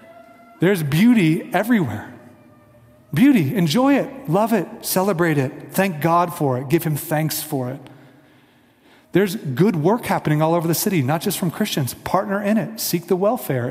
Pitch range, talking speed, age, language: 140-180 Hz, 160 wpm, 40-59, English